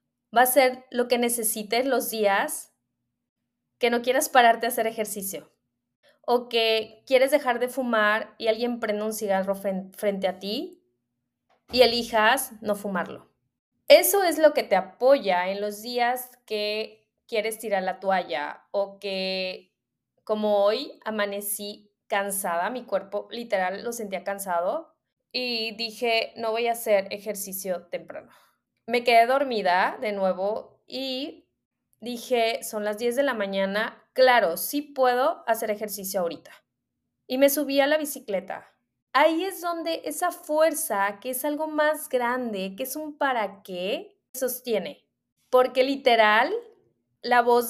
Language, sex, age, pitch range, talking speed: Spanish, female, 20-39, 200-255 Hz, 140 wpm